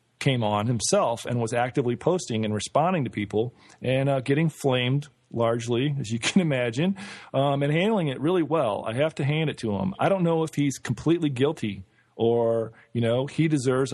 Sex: male